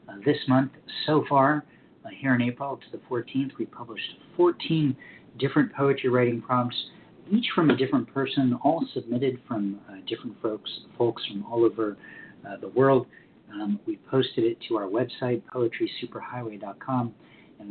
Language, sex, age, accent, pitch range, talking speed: English, male, 50-69, American, 105-140 Hz, 155 wpm